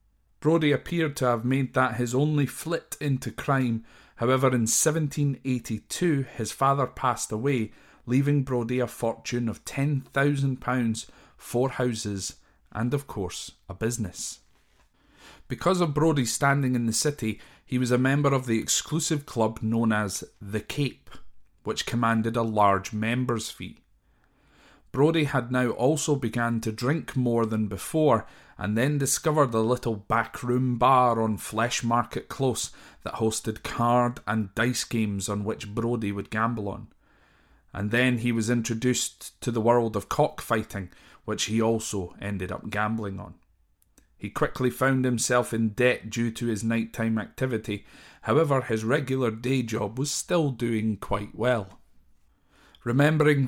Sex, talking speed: male, 145 wpm